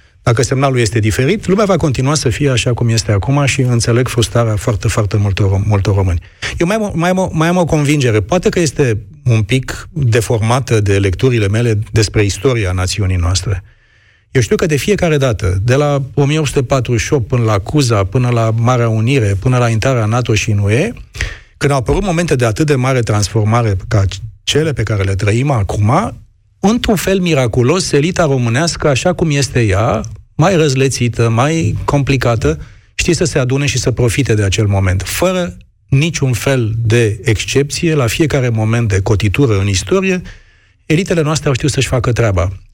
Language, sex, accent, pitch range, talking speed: Romanian, male, native, 105-140 Hz, 175 wpm